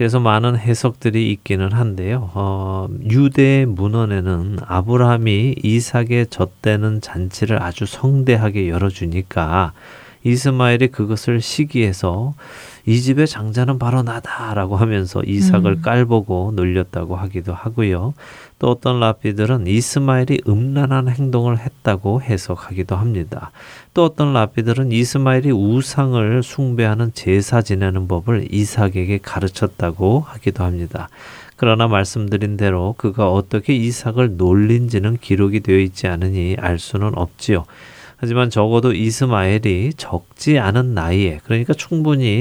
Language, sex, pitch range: Korean, male, 95-125 Hz